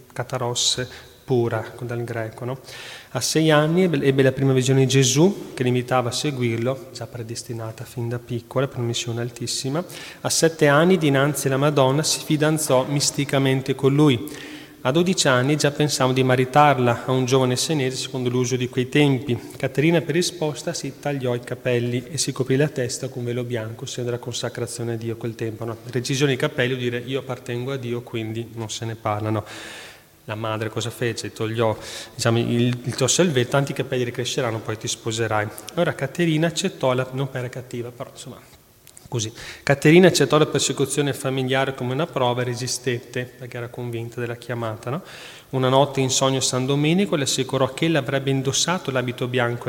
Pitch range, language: 120-140 Hz, Italian